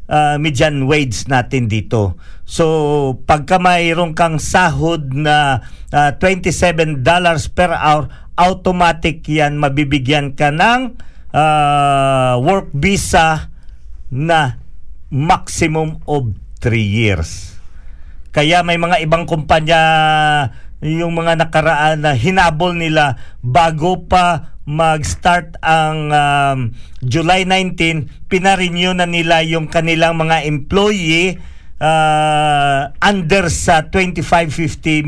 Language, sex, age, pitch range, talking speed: Filipino, male, 50-69, 145-175 Hz, 95 wpm